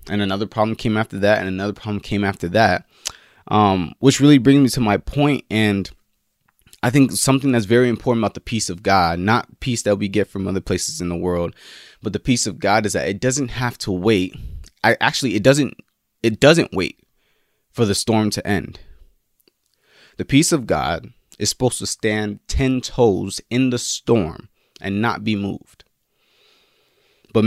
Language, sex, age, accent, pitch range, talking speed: English, male, 20-39, American, 95-120 Hz, 185 wpm